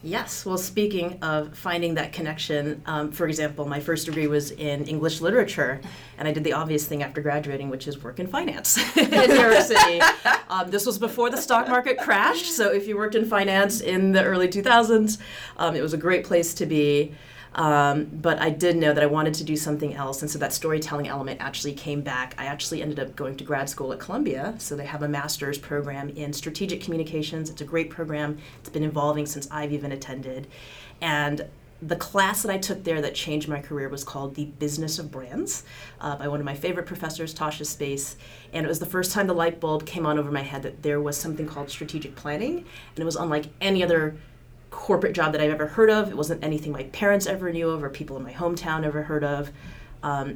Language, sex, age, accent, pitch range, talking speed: English, female, 30-49, American, 145-170 Hz, 225 wpm